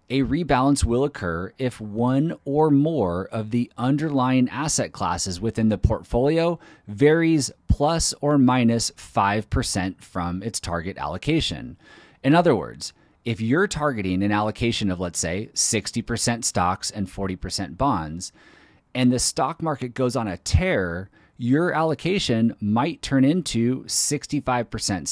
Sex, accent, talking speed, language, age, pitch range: male, American, 130 wpm, English, 30-49, 100-140 Hz